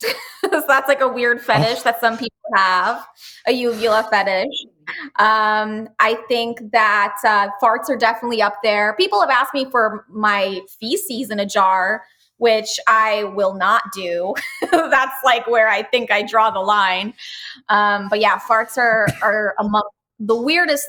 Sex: female